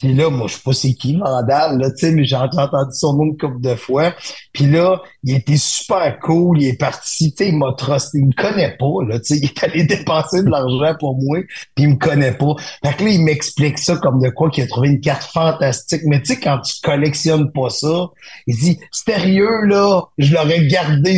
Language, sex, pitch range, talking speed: French, male, 135-165 Hz, 230 wpm